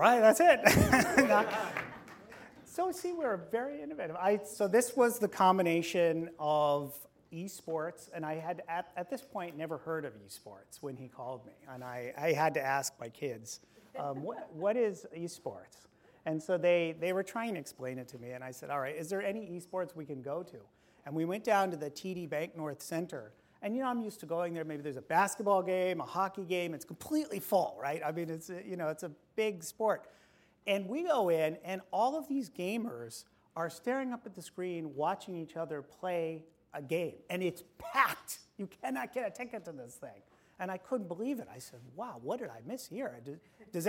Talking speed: 210 wpm